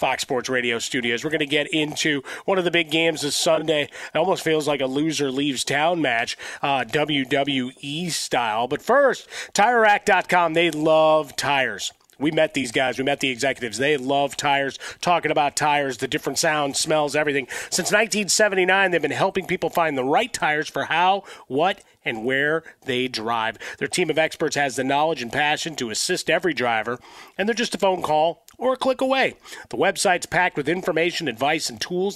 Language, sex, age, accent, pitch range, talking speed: English, male, 30-49, American, 145-180 Hz, 185 wpm